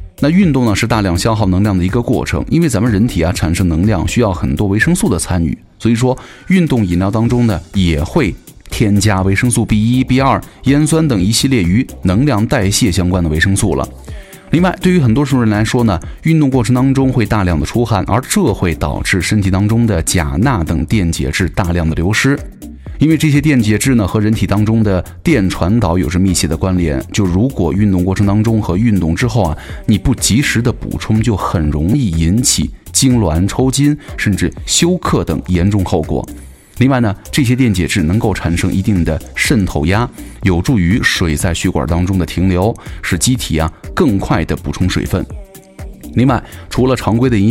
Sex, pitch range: male, 85-120 Hz